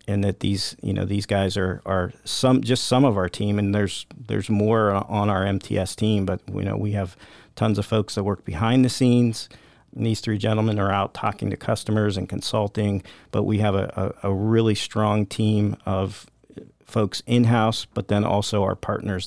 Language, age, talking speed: English, 40-59, 200 wpm